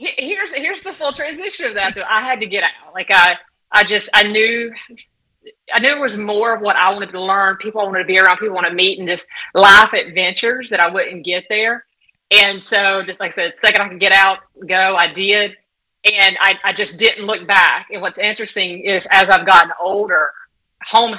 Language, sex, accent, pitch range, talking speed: English, female, American, 175-210 Hz, 225 wpm